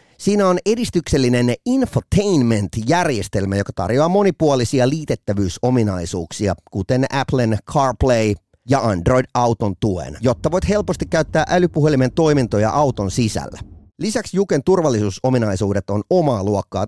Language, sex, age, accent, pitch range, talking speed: Finnish, male, 30-49, native, 105-165 Hz, 100 wpm